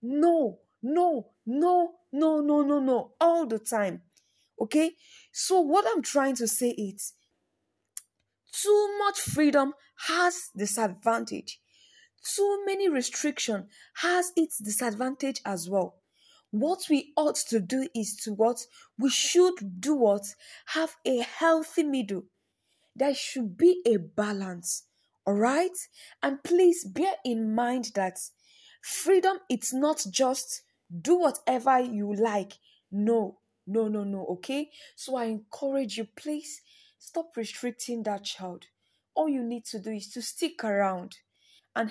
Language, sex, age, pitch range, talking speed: English, female, 10-29, 215-310 Hz, 130 wpm